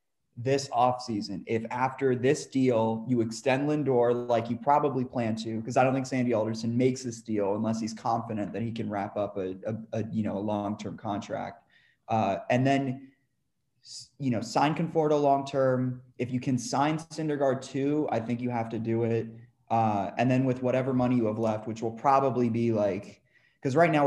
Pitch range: 110-130 Hz